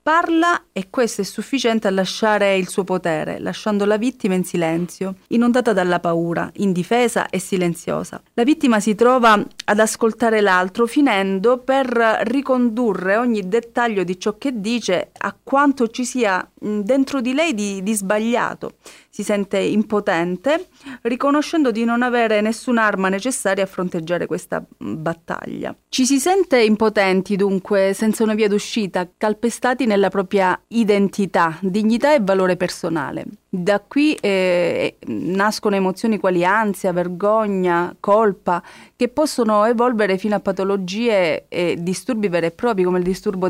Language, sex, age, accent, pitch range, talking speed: Italian, female, 30-49, native, 185-235 Hz, 140 wpm